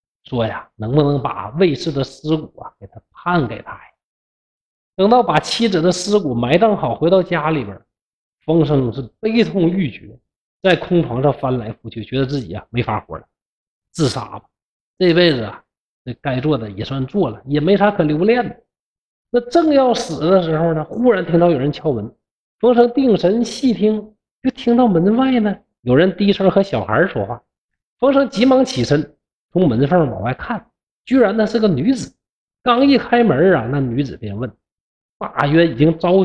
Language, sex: Chinese, male